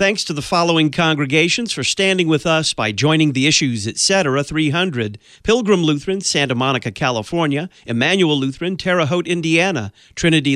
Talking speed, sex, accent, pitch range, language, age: 150 wpm, male, American, 135-185 Hz, English, 40-59